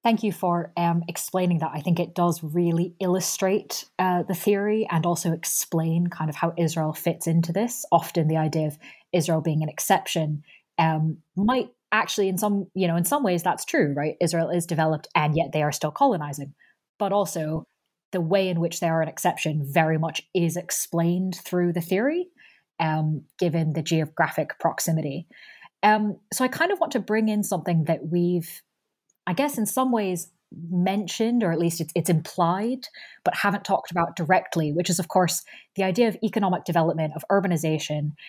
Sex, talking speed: female, 180 wpm